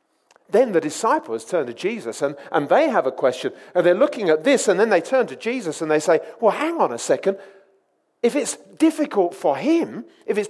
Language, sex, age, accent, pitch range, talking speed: English, male, 40-59, British, 160-250 Hz, 215 wpm